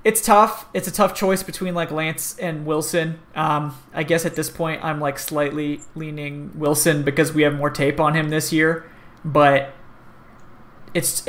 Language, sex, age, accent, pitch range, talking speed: English, male, 30-49, American, 140-165 Hz, 175 wpm